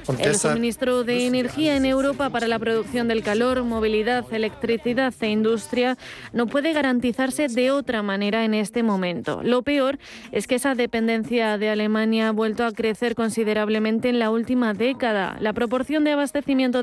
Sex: female